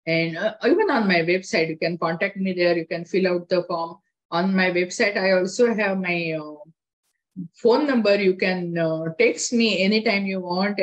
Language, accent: English, Indian